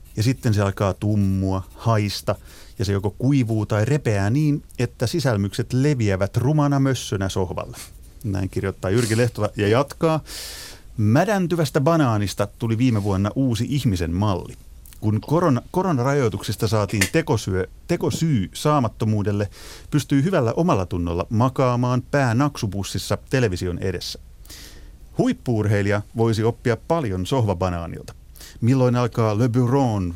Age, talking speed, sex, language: 30-49, 115 wpm, male, Finnish